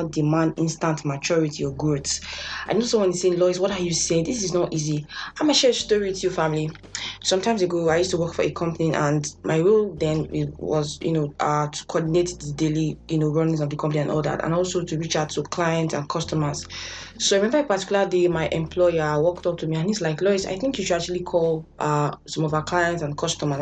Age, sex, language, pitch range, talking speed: 20-39, female, English, 155-195 Hz, 245 wpm